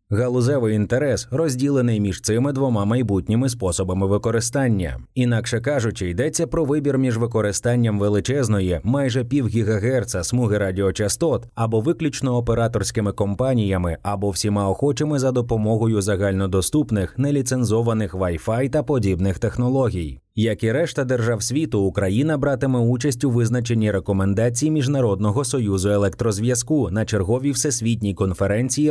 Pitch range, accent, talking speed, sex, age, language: 100-135 Hz, native, 110 wpm, male, 30-49, Ukrainian